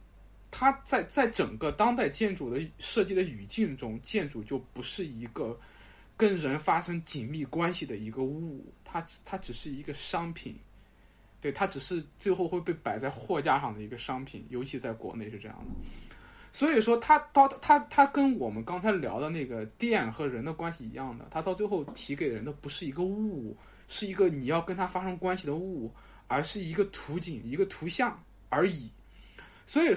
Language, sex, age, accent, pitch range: Chinese, male, 20-39, native, 135-215 Hz